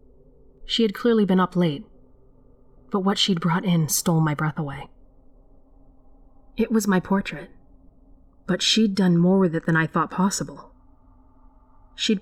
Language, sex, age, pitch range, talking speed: English, female, 30-49, 140-190 Hz, 145 wpm